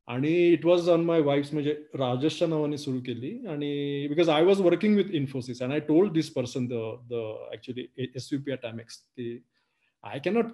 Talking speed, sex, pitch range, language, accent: 170 wpm, male, 130-155 Hz, Marathi, native